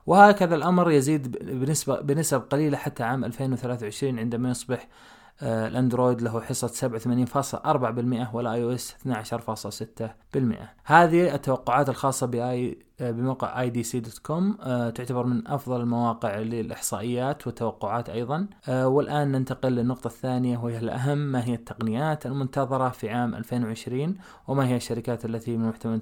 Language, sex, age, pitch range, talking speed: Arabic, male, 20-39, 120-150 Hz, 115 wpm